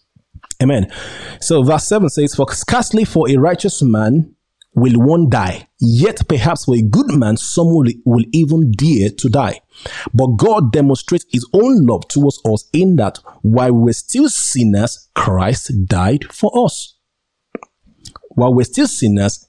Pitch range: 105-155 Hz